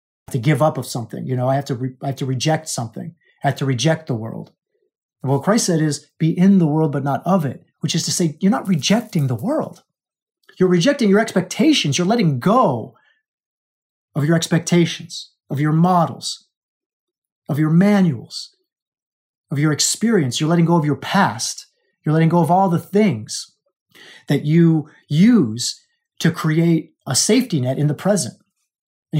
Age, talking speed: 30-49, 180 wpm